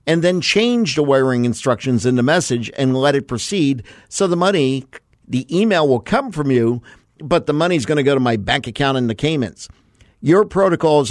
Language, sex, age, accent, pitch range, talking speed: English, male, 50-69, American, 125-160 Hz, 205 wpm